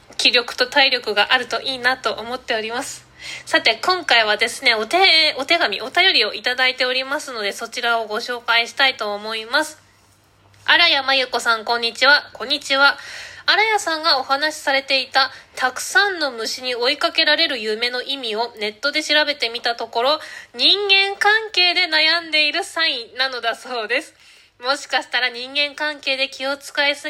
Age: 20-39